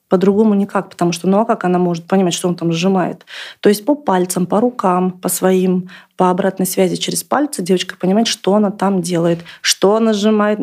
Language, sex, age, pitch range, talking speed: Russian, female, 30-49, 180-215 Hz, 205 wpm